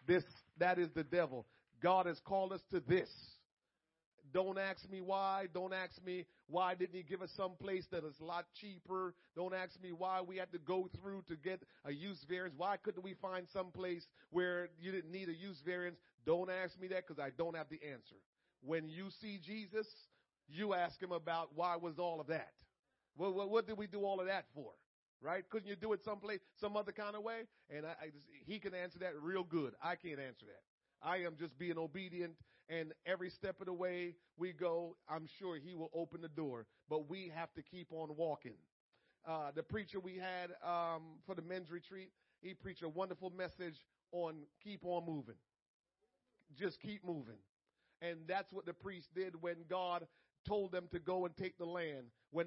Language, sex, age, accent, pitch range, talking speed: English, male, 40-59, American, 165-190 Hz, 205 wpm